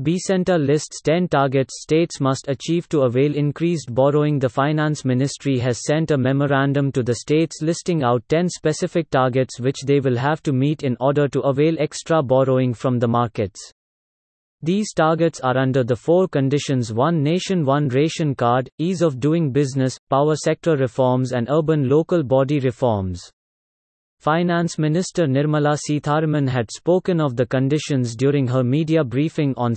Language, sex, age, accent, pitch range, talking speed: English, male, 30-49, Indian, 130-155 Hz, 160 wpm